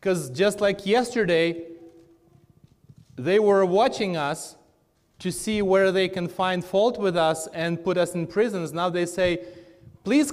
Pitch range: 165-210 Hz